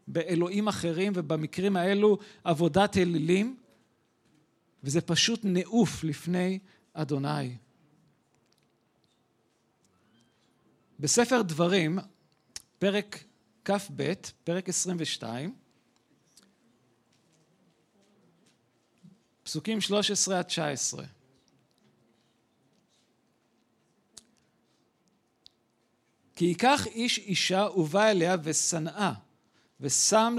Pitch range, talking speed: 155-200 Hz, 50 wpm